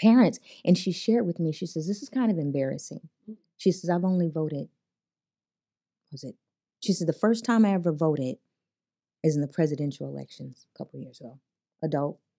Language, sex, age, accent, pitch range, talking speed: English, female, 30-49, American, 150-185 Hz, 195 wpm